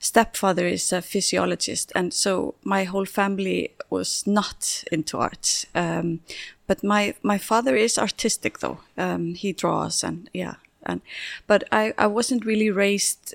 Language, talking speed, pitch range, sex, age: English, 150 wpm, 185-220 Hz, female, 30-49